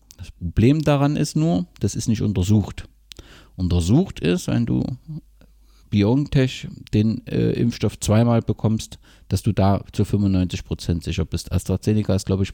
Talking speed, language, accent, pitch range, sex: 145 wpm, German, German, 100-125 Hz, male